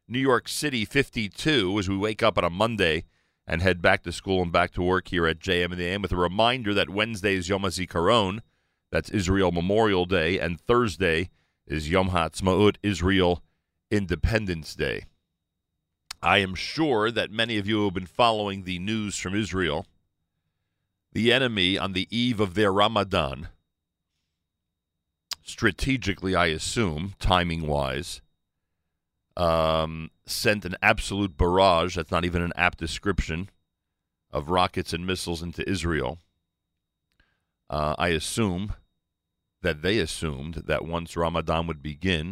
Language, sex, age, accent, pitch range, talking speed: English, male, 40-59, American, 80-95 Hz, 140 wpm